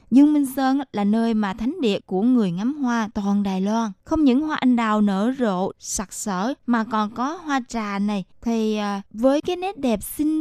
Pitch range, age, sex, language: 200-245 Hz, 20-39, female, Vietnamese